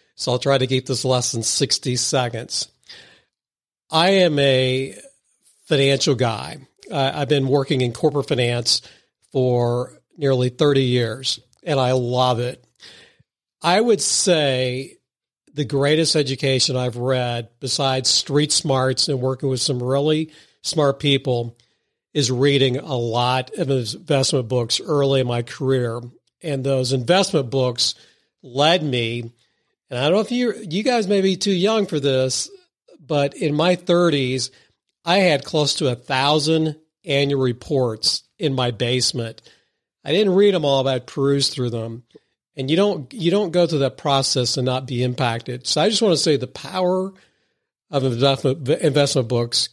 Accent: American